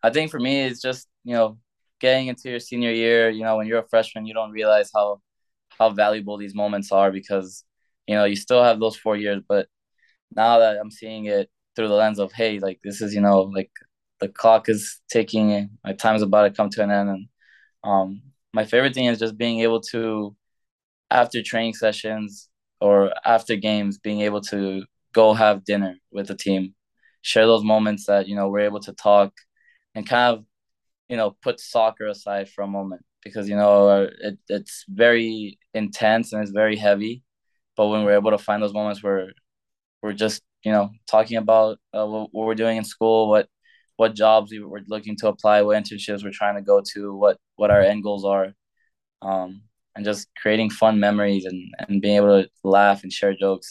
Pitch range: 100-110 Hz